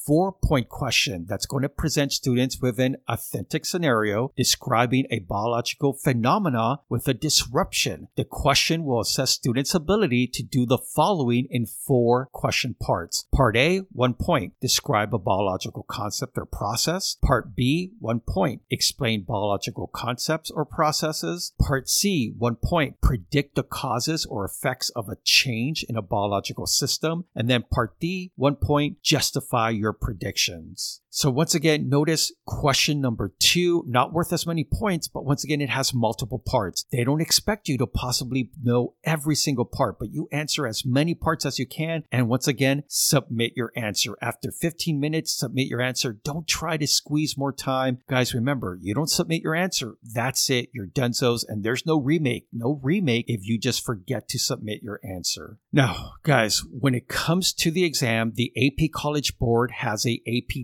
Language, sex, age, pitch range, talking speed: English, male, 50-69, 120-150 Hz, 170 wpm